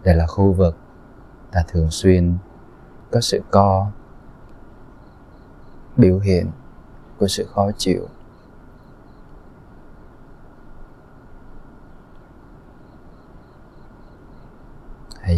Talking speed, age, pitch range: 65 wpm, 20-39, 80-105 Hz